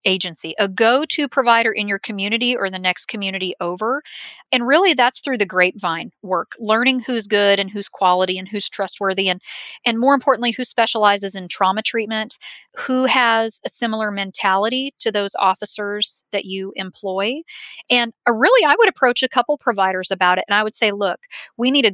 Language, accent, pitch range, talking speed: English, American, 195-255 Hz, 180 wpm